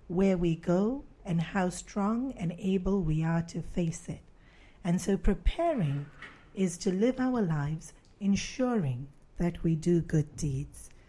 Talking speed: 145 wpm